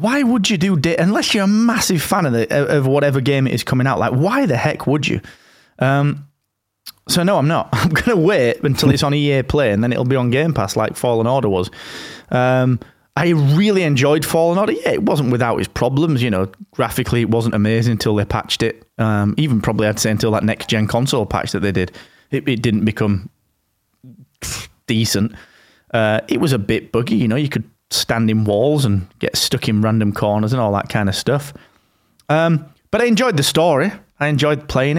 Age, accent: 20-39, British